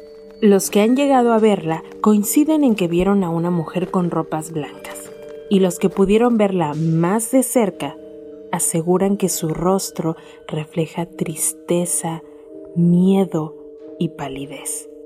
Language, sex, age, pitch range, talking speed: Spanish, female, 30-49, 160-215 Hz, 130 wpm